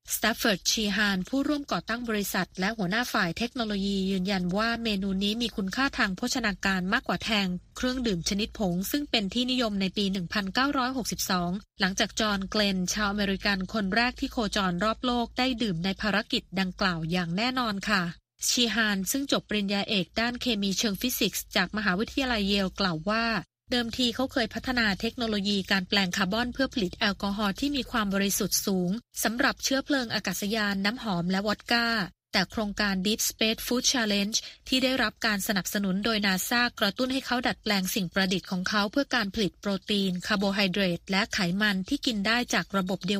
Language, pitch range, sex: Thai, 195-235 Hz, female